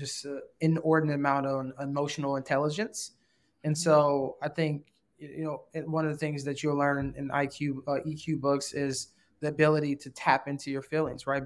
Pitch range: 140-160 Hz